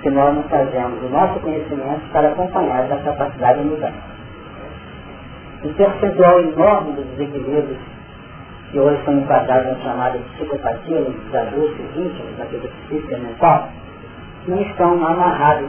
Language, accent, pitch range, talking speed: Portuguese, Brazilian, 140-180 Hz, 155 wpm